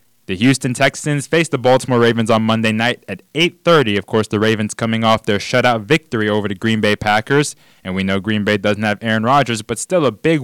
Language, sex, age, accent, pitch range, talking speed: English, male, 20-39, American, 110-150 Hz, 225 wpm